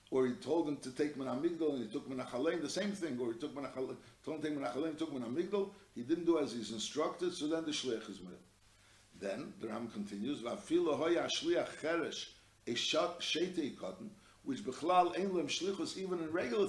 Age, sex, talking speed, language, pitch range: 60-79, male, 180 wpm, English, 115-180 Hz